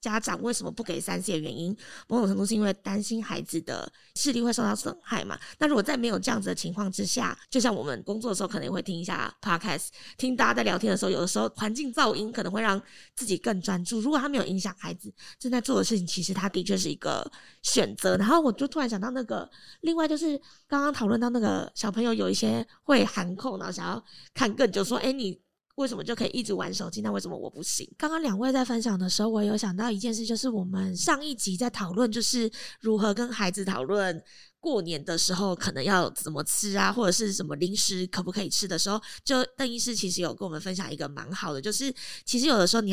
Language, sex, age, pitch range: Chinese, female, 20-39, 185-245 Hz